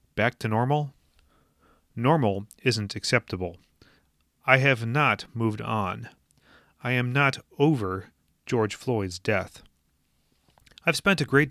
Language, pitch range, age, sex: English, 105-145 Hz, 30-49, male